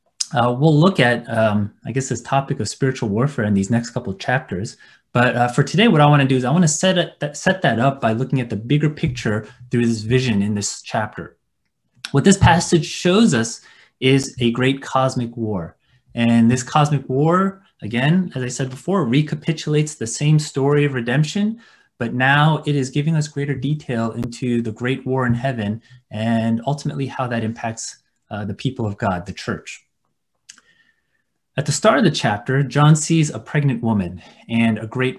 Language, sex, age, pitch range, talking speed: English, male, 20-39, 115-150 Hz, 190 wpm